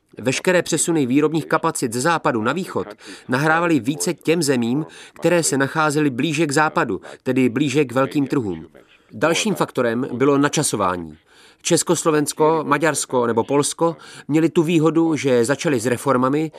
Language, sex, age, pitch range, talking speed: Czech, male, 30-49, 125-155 Hz, 135 wpm